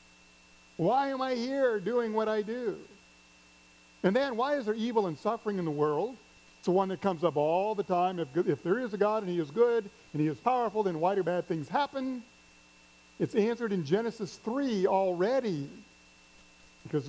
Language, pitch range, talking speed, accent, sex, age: English, 140-210 Hz, 195 wpm, American, male, 50-69